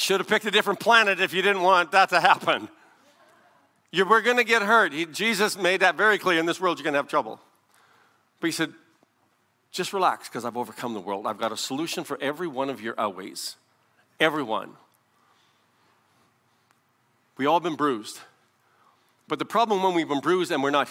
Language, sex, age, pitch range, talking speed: English, male, 50-69, 125-180 Hz, 190 wpm